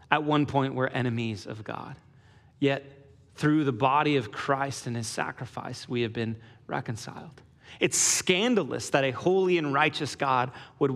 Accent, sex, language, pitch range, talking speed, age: American, male, English, 125-145 Hz, 160 wpm, 30-49